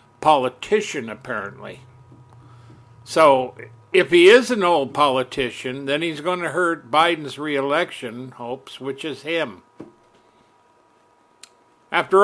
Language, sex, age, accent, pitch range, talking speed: English, male, 60-79, American, 130-175 Hz, 105 wpm